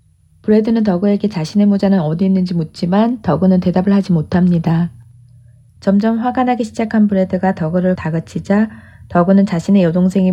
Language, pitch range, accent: Korean, 160-205 Hz, native